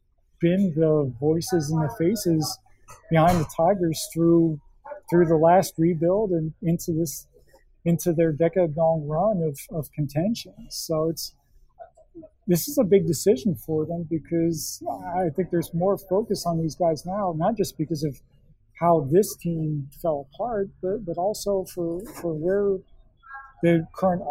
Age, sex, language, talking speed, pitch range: 40-59, male, English, 150 wpm, 160-185 Hz